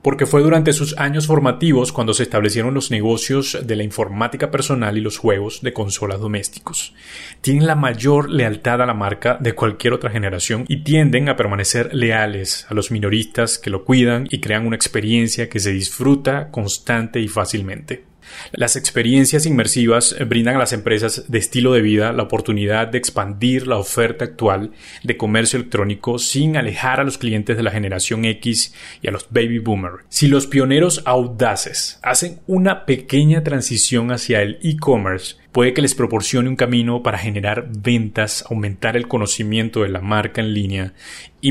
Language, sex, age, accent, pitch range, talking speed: Spanish, male, 30-49, Colombian, 110-130 Hz, 170 wpm